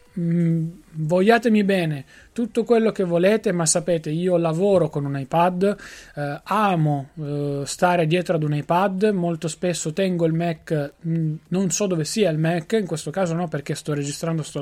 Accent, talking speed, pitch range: native, 170 wpm, 150-185 Hz